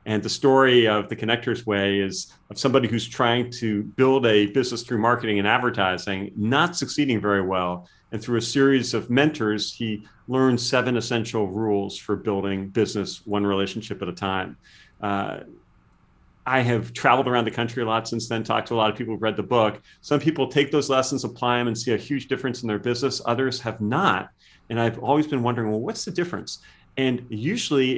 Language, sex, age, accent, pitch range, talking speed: English, male, 40-59, American, 105-130 Hz, 200 wpm